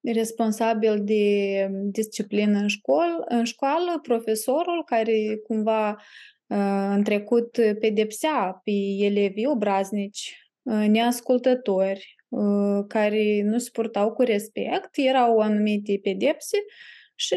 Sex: female